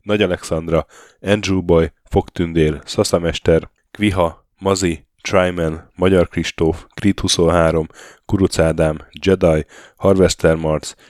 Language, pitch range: Hungarian, 80-95 Hz